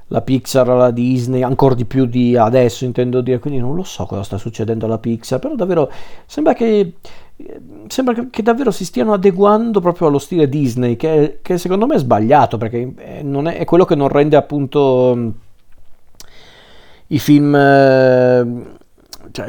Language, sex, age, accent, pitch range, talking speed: Italian, male, 40-59, native, 125-155 Hz, 165 wpm